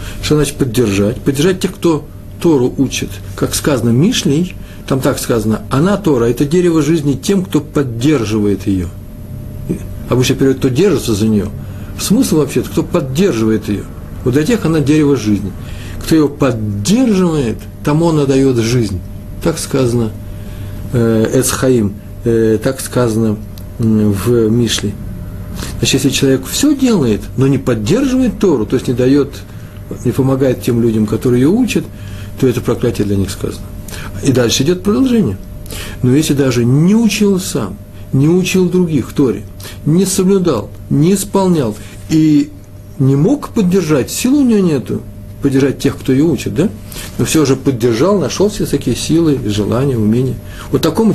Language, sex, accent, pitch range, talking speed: Russian, male, native, 100-150 Hz, 145 wpm